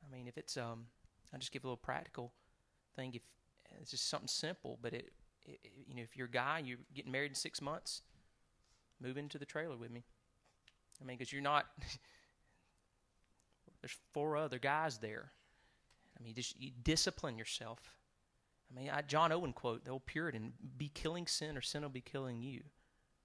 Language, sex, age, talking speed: English, male, 30-49, 190 wpm